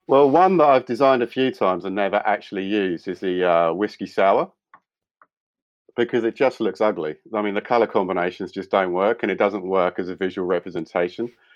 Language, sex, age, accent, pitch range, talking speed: English, male, 50-69, British, 105-135 Hz, 195 wpm